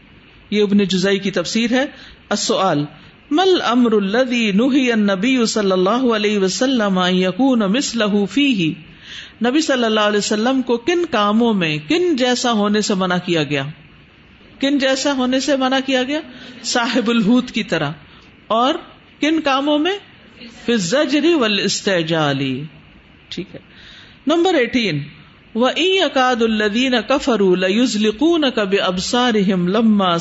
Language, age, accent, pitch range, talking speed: English, 50-69, Indian, 195-265 Hz, 125 wpm